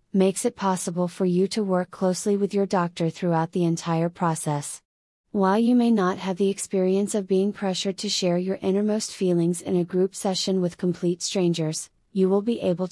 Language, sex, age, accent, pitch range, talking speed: English, female, 30-49, American, 175-195 Hz, 190 wpm